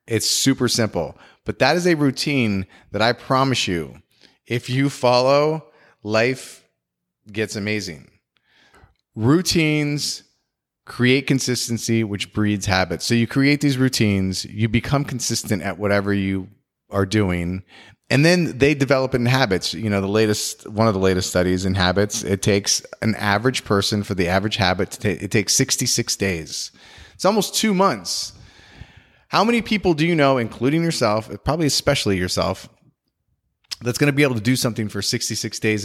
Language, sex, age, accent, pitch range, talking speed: English, male, 30-49, American, 100-130 Hz, 160 wpm